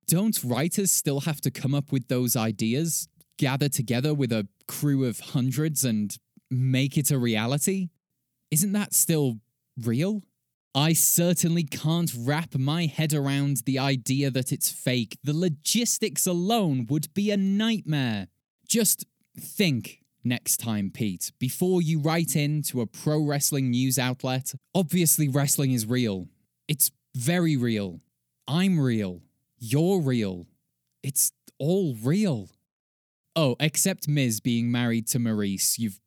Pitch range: 120-165 Hz